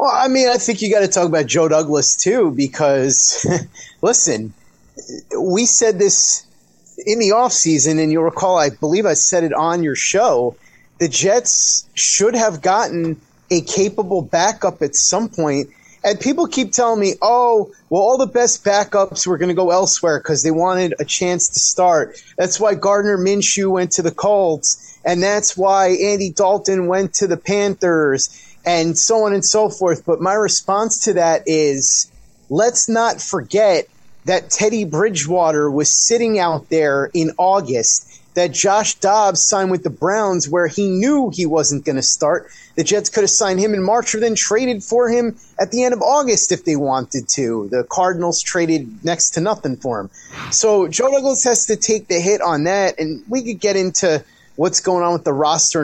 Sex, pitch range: male, 165-215 Hz